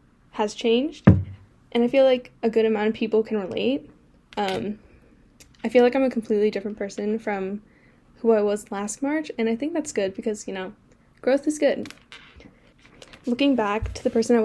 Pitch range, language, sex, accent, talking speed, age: 210-250 Hz, English, female, American, 185 wpm, 10-29